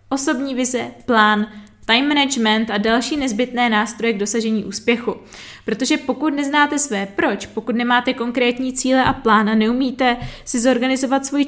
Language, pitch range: Czech, 215-255 Hz